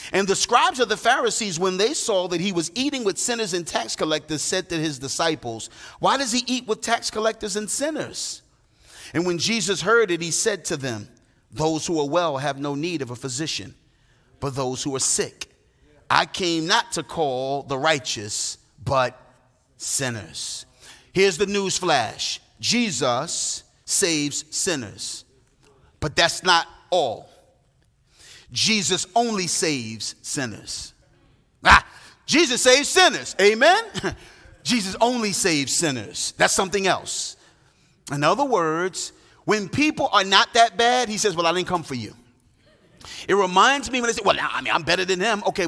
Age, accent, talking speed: 40-59, American, 160 wpm